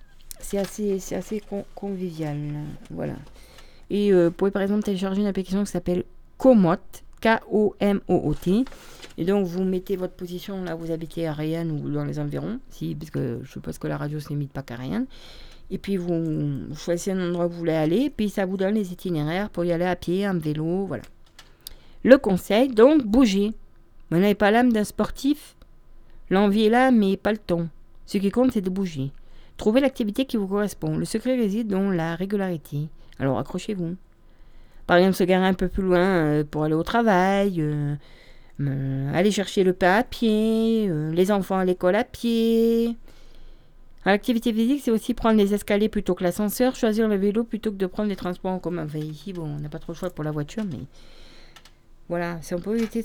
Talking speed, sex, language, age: 200 wpm, female, French, 40-59